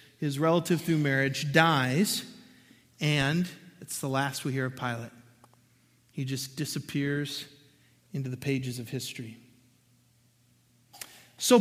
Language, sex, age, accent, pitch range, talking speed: English, male, 40-59, American, 150-230 Hz, 115 wpm